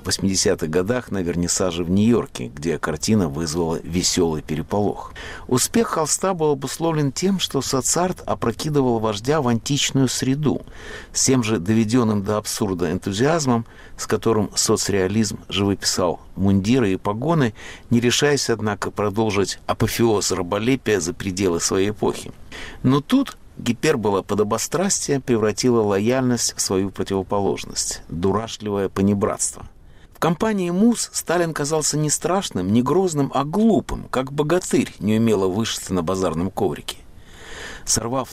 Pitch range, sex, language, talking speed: 100-140 Hz, male, Russian, 125 wpm